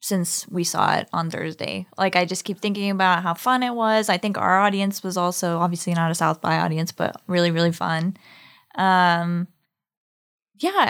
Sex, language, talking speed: female, English, 185 wpm